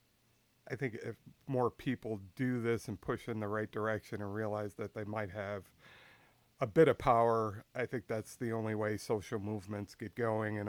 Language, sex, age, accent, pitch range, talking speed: English, male, 50-69, American, 100-115 Hz, 190 wpm